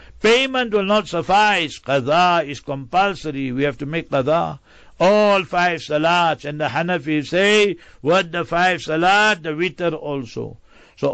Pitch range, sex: 145-175 Hz, male